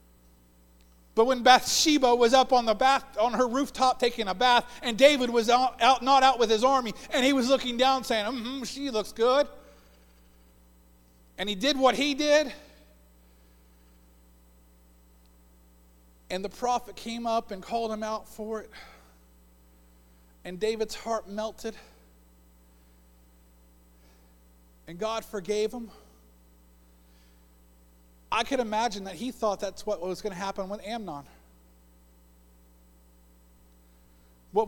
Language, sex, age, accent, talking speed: English, male, 50-69, American, 130 wpm